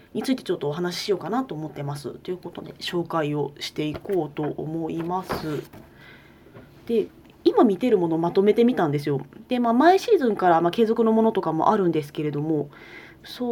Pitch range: 165-240 Hz